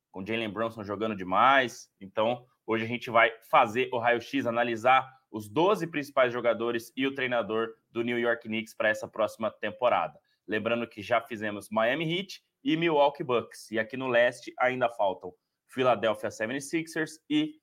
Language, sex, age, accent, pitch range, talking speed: Portuguese, male, 20-39, Brazilian, 110-140 Hz, 165 wpm